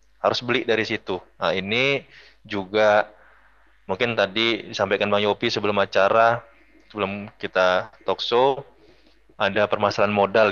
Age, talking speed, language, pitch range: 20-39, 120 wpm, Indonesian, 95-110 Hz